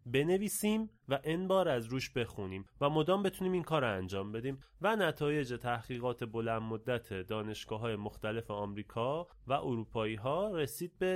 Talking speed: 155 wpm